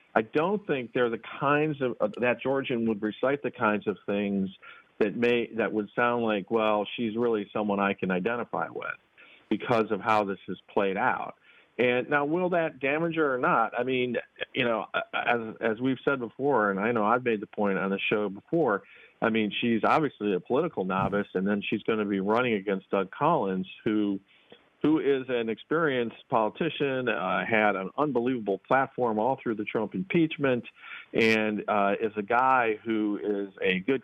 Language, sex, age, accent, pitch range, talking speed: English, male, 50-69, American, 105-145 Hz, 190 wpm